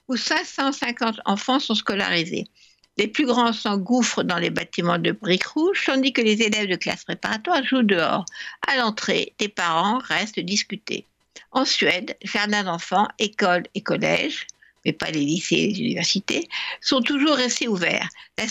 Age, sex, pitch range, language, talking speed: 60-79, female, 205-260 Hz, French, 160 wpm